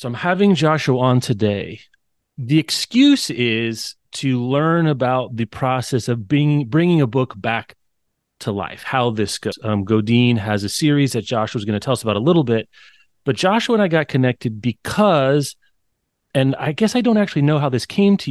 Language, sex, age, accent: English, male, 30-49, American